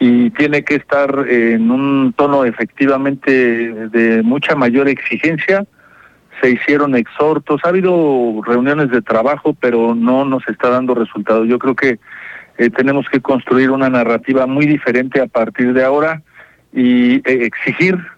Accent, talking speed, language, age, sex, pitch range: Mexican, 140 wpm, Spanish, 40-59, male, 120-150 Hz